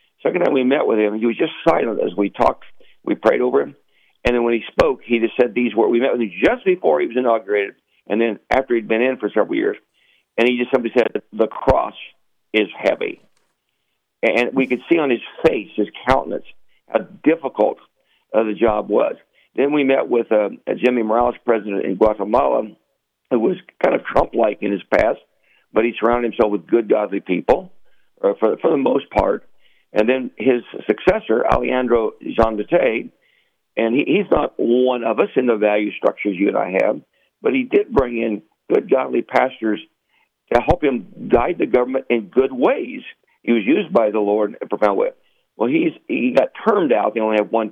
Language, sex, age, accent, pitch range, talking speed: English, male, 60-79, American, 105-130 Hz, 205 wpm